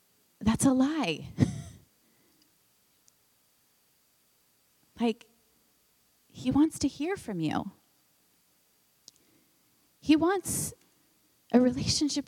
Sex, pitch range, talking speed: female, 165-245 Hz, 70 wpm